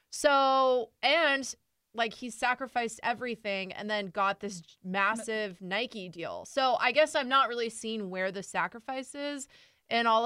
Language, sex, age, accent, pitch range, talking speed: English, female, 20-39, American, 180-220 Hz, 150 wpm